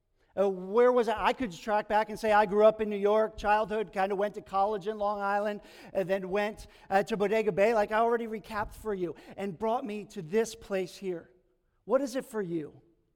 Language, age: English, 50-69